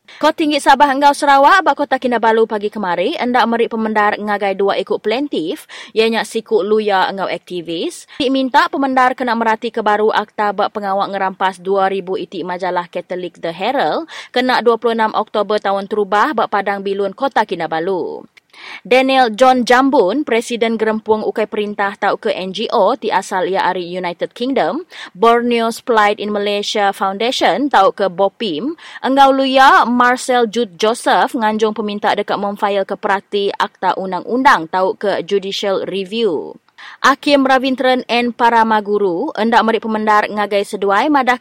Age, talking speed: 20-39, 145 wpm